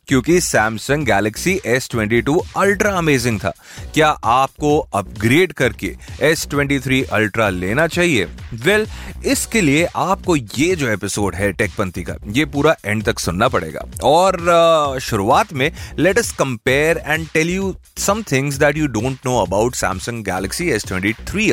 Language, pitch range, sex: Hindi, 105-160 Hz, male